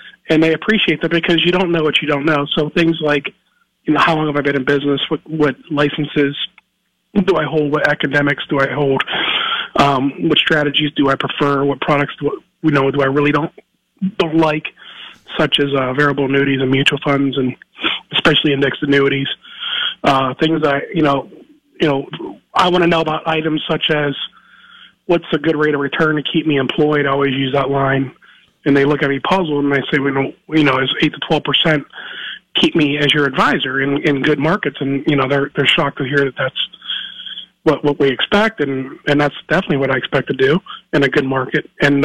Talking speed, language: 210 wpm, English